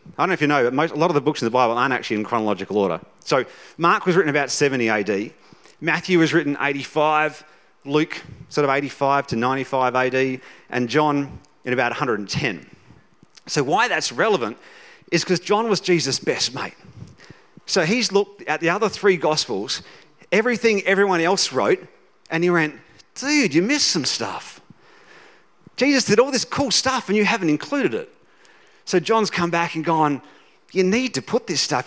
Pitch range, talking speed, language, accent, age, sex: 140-200 Hz, 185 wpm, English, Australian, 40-59, male